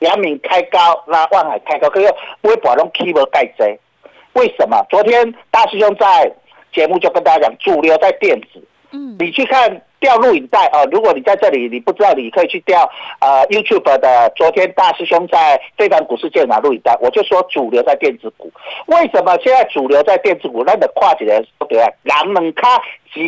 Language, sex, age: Chinese, male, 50-69